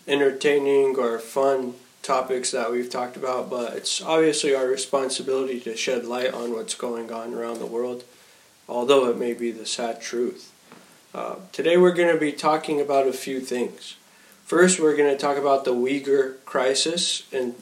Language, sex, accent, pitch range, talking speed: English, male, American, 130-160 Hz, 175 wpm